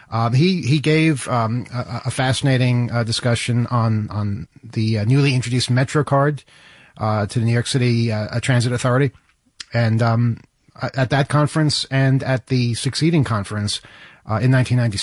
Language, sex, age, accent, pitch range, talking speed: English, male, 40-59, American, 110-135 Hz, 160 wpm